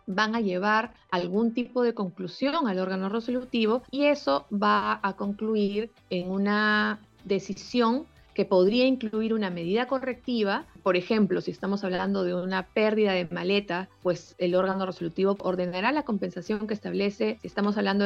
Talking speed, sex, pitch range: 155 wpm, female, 180-220 Hz